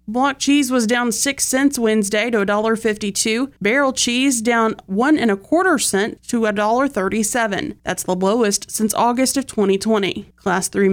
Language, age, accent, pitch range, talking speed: English, 30-49, American, 200-235 Hz, 155 wpm